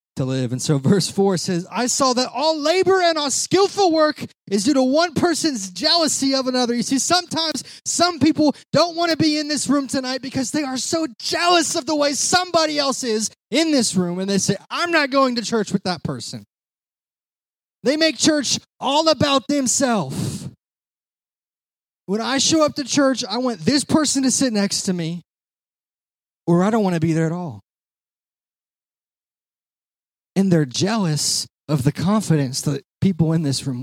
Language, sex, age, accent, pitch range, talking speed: English, male, 20-39, American, 160-270 Hz, 185 wpm